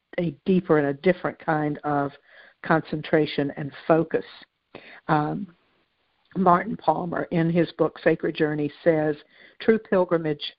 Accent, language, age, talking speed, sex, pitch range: American, English, 60-79, 120 wpm, female, 150-180 Hz